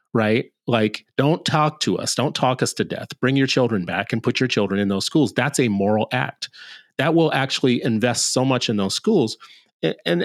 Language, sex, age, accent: English, male, 30-49, American